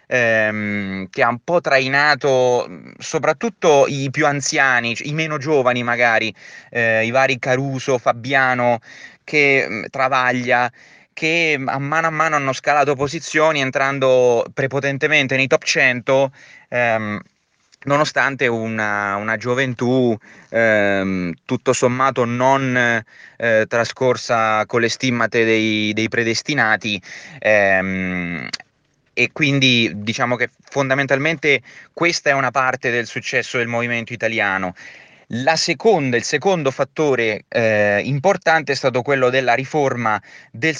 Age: 20-39